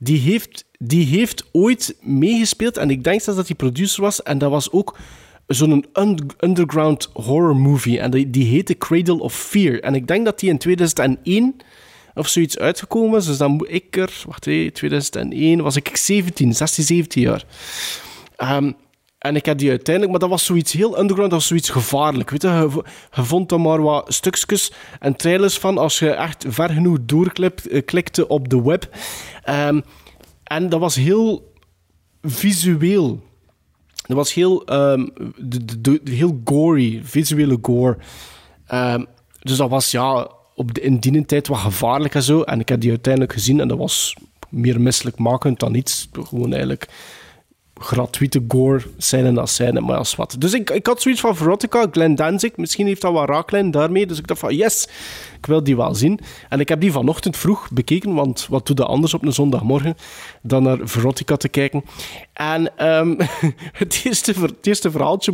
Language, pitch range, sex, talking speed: Dutch, 130-175 Hz, male, 180 wpm